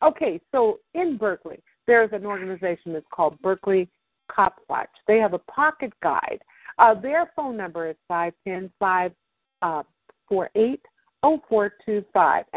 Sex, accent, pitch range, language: female, American, 180-250 Hz, English